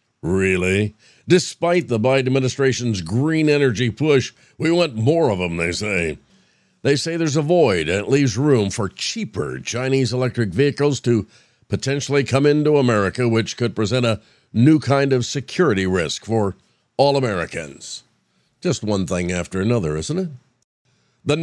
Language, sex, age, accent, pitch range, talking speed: English, male, 50-69, American, 110-150 Hz, 150 wpm